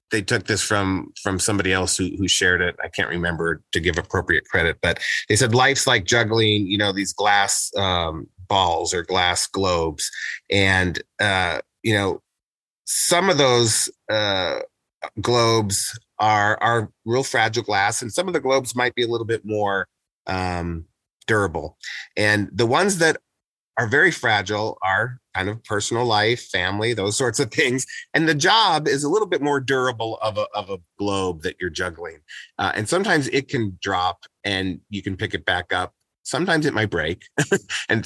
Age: 30-49